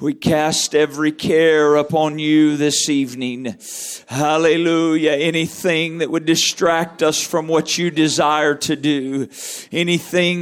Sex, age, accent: male, 50-69, American